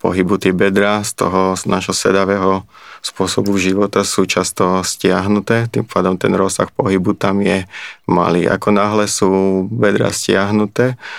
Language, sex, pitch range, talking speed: Slovak, male, 95-100 Hz, 130 wpm